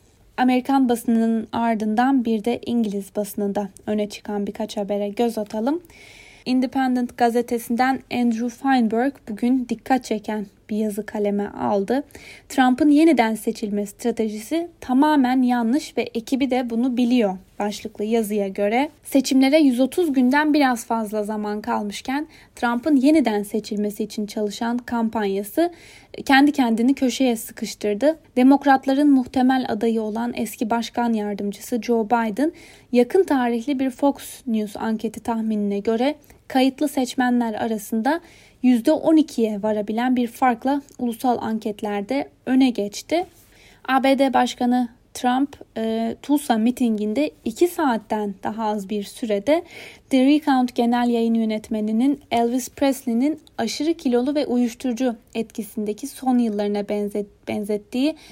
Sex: female